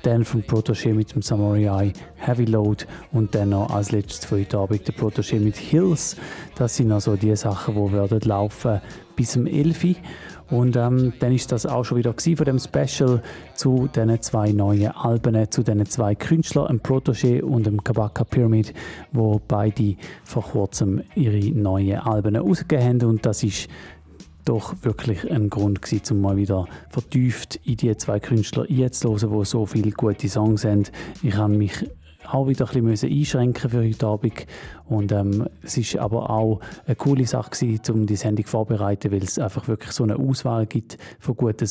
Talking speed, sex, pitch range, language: 180 wpm, male, 105-125 Hz, German